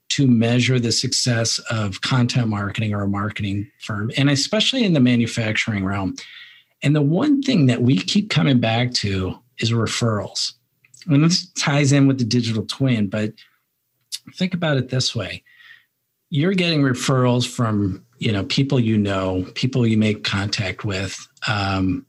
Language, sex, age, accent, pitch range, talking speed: English, male, 50-69, American, 115-140 Hz, 150 wpm